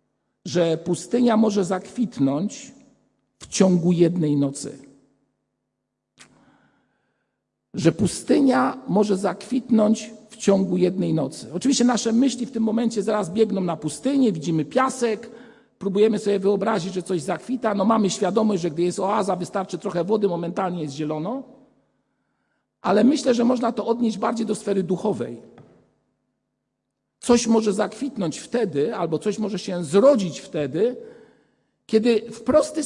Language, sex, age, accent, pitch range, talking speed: Polish, male, 50-69, native, 180-235 Hz, 125 wpm